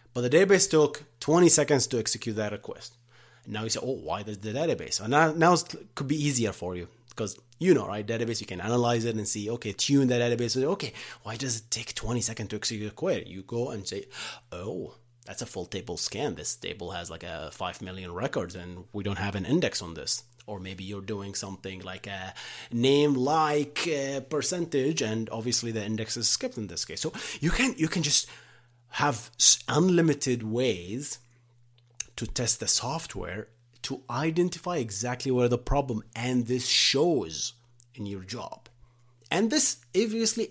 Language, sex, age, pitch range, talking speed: English, male, 30-49, 110-135 Hz, 185 wpm